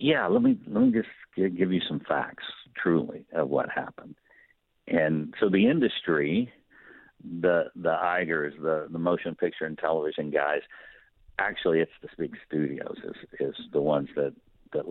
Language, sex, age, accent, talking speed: English, male, 60-79, American, 155 wpm